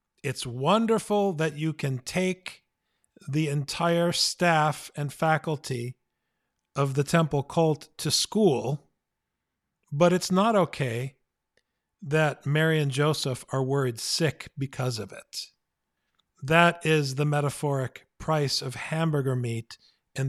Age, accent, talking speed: 50-69, American, 120 wpm